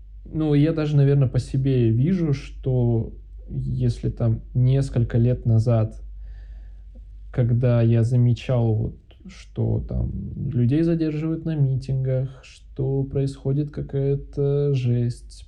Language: Russian